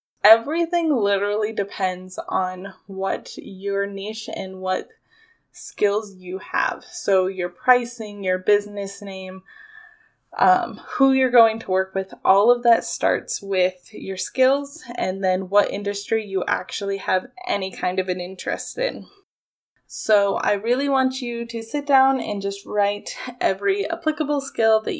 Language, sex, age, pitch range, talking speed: English, female, 10-29, 195-260 Hz, 145 wpm